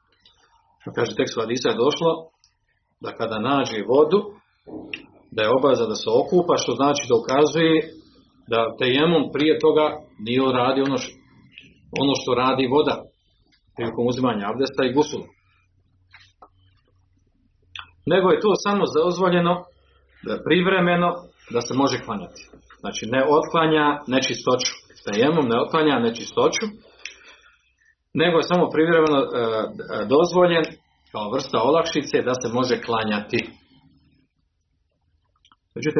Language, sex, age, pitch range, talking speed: Croatian, male, 40-59, 110-160 Hz, 110 wpm